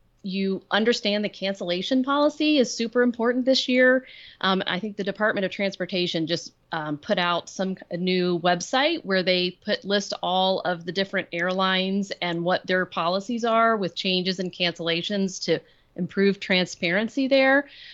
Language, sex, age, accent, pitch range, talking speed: English, female, 30-49, American, 175-215 Hz, 155 wpm